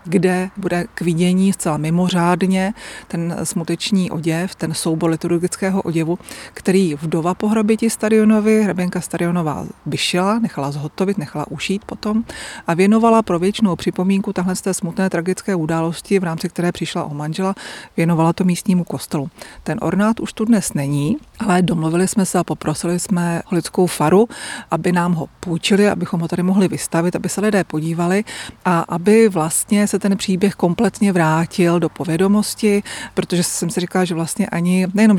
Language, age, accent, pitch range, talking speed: Czech, 30-49, native, 165-200 Hz, 160 wpm